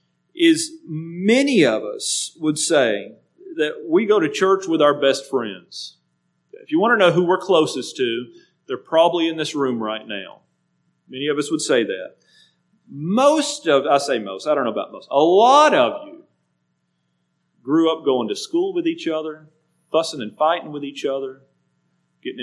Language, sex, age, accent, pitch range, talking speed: English, male, 40-59, American, 140-210 Hz, 175 wpm